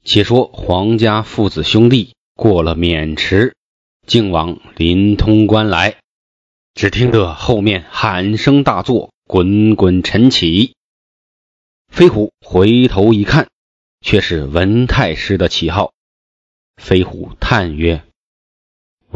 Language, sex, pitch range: Chinese, male, 90-115 Hz